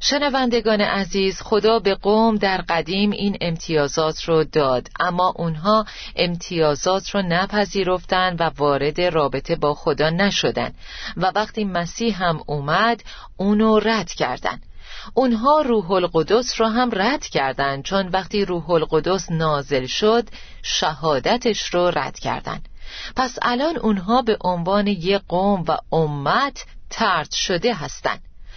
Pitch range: 155-210 Hz